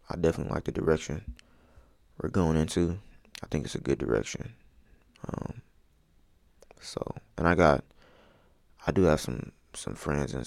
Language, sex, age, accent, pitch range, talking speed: English, male, 20-39, American, 80-95 Hz, 150 wpm